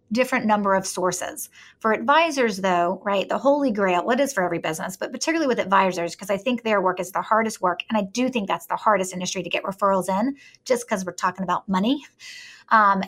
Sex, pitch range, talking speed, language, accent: female, 190-255 Hz, 220 wpm, English, American